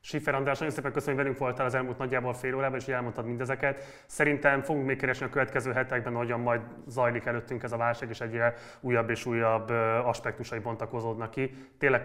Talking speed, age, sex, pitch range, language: 195 wpm, 20-39, male, 115-135 Hz, Hungarian